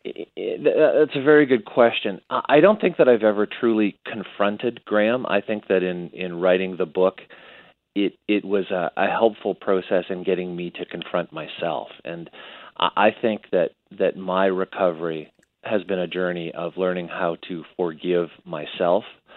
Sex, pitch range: male, 90-110 Hz